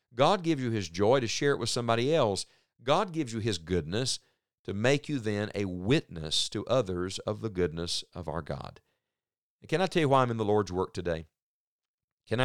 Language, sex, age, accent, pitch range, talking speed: English, male, 50-69, American, 95-130 Hz, 205 wpm